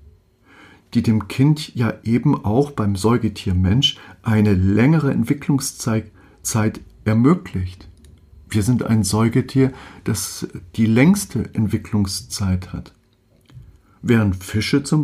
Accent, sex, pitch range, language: German, male, 100-140 Hz, German